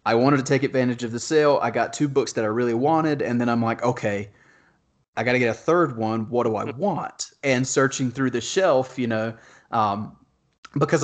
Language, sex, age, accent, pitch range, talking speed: English, male, 30-49, American, 115-140 Hz, 225 wpm